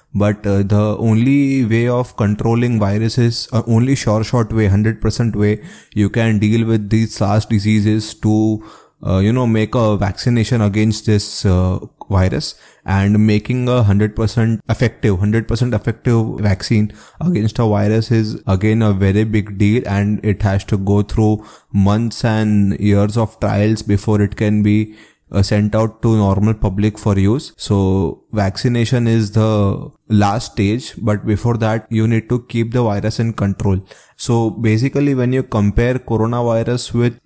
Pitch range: 105-120 Hz